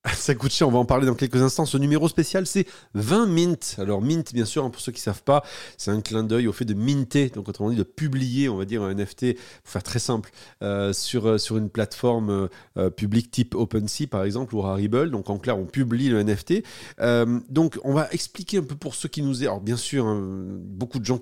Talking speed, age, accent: 250 wpm, 40-59, French